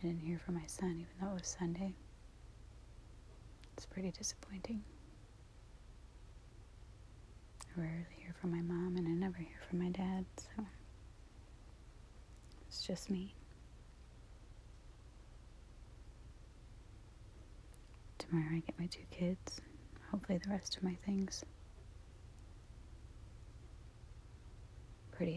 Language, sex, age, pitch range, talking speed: English, female, 30-49, 105-170 Hz, 105 wpm